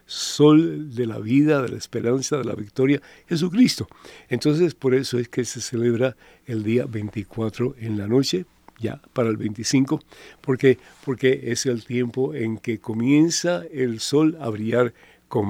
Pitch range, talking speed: 120-140 Hz, 160 wpm